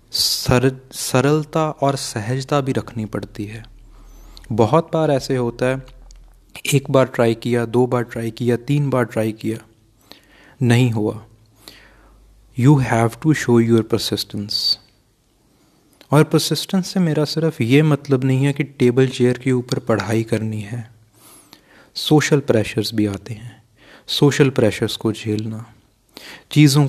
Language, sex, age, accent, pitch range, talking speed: Hindi, male, 30-49, native, 110-140 Hz, 130 wpm